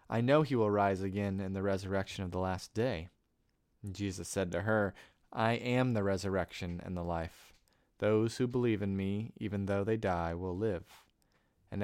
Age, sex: 20-39, male